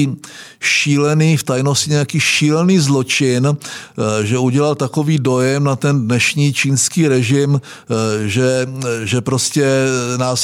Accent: native